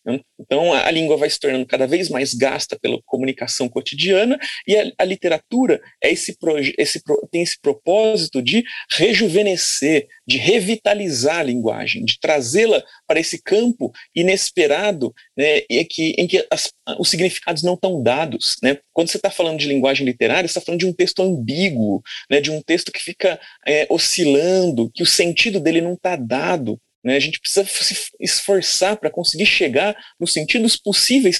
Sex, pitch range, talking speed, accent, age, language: male, 145-210 Hz, 155 wpm, Brazilian, 40-59, Portuguese